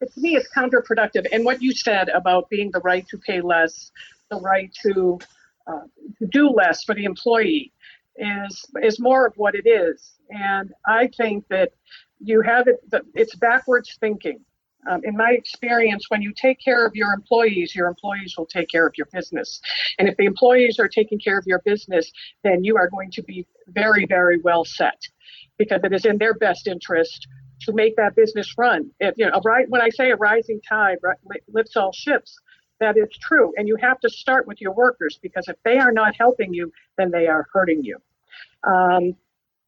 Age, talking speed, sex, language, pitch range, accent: 50-69, 195 wpm, female, English, 190-245 Hz, American